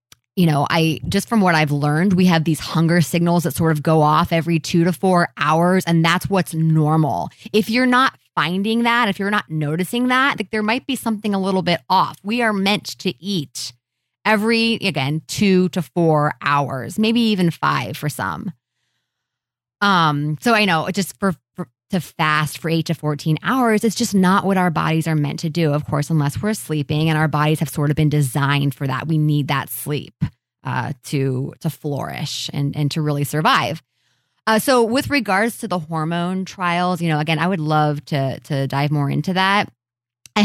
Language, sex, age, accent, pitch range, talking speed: English, female, 20-39, American, 150-195 Hz, 200 wpm